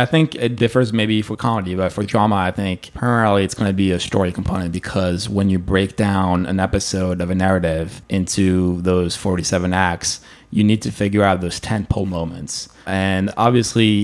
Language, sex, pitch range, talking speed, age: English, male, 95-110 Hz, 190 wpm, 20-39